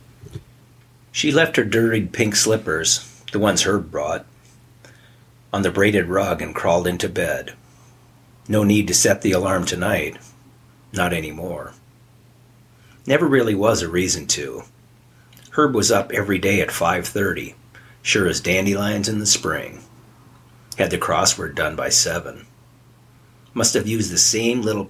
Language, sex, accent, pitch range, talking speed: English, male, American, 100-125 Hz, 140 wpm